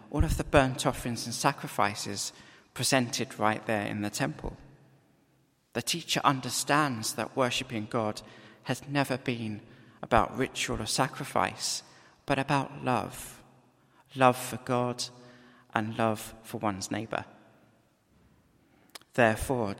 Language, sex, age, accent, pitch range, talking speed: English, male, 40-59, British, 115-140 Hz, 115 wpm